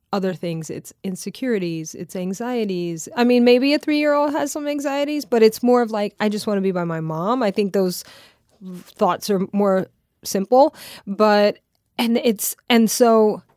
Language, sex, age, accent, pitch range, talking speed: English, female, 20-39, American, 190-235 Hz, 175 wpm